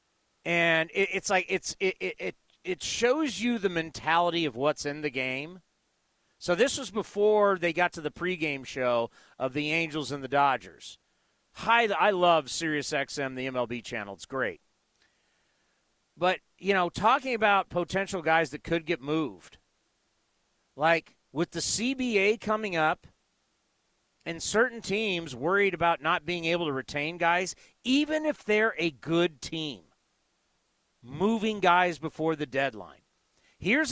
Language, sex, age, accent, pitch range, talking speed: English, male, 40-59, American, 155-220 Hz, 145 wpm